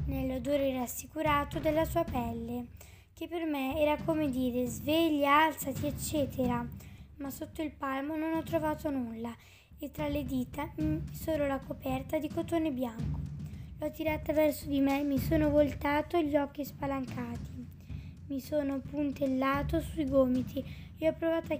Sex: female